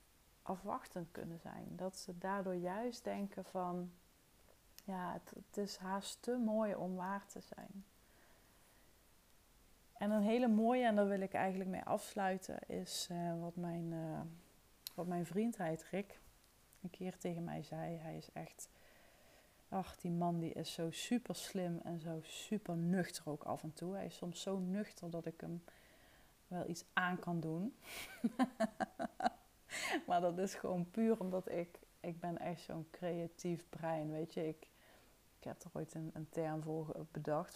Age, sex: 30-49, female